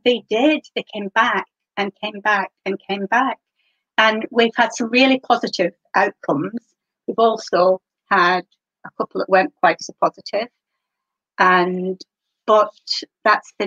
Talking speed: 140 wpm